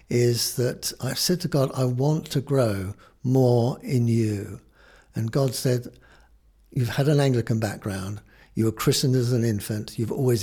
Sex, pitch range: male, 110-130 Hz